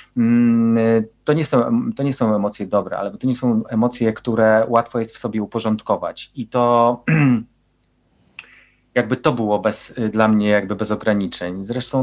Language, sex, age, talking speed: Polish, male, 30-49, 155 wpm